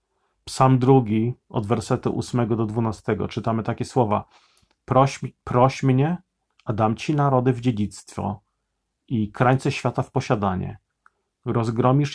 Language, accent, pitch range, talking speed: Polish, native, 110-130 Hz, 125 wpm